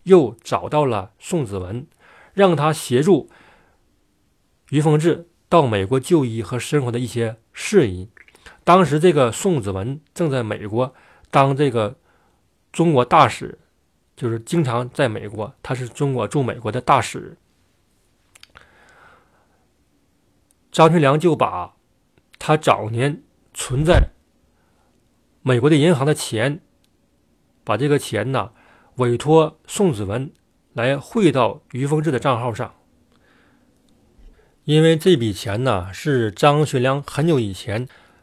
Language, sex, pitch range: Chinese, male, 115-155 Hz